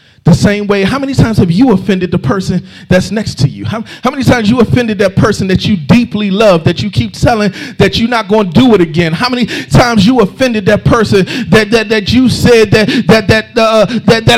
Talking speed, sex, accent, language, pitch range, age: 225 wpm, male, American, English, 210-270 Hz, 40-59